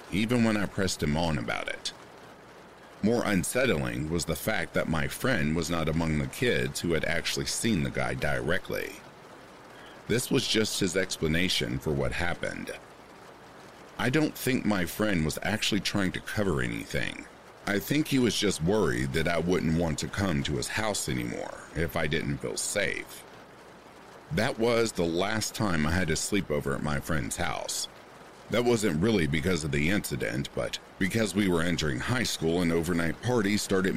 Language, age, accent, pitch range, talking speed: English, 50-69, American, 75-100 Hz, 175 wpm